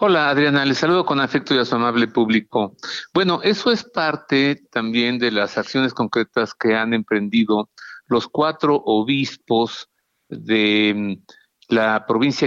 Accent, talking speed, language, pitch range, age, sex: Mexican, 140 wpm, Spanish, 110-145 Hz, 50-69, male